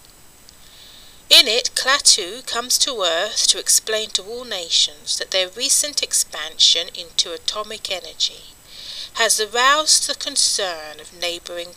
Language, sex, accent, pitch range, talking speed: English, female, British, 195-290 Hz, 120 wpm